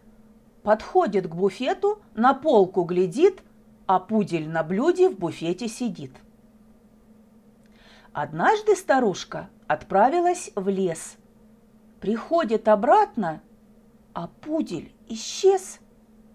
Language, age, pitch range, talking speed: Russian, 40-59, 220-285 Hz, 85 wpm